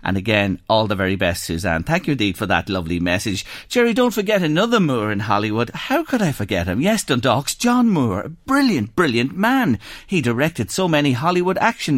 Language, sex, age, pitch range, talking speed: English, male, 40-59, 105-175 Hz, 200 wpm